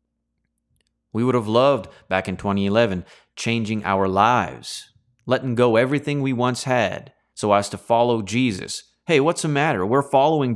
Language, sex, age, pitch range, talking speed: English, male, 30-49, 100-135 Hz, 155 wpm